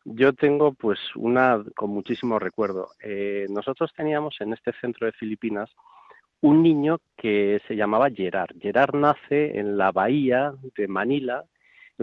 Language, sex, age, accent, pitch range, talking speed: Spanish, male, 40-59, Spanish, 110-150 Hz, 145 wpm